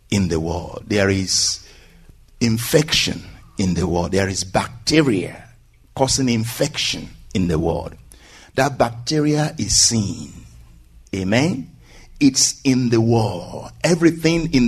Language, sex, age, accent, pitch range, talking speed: English, male, 60-79, Nigerian, 100-160 Hz, 115 wpm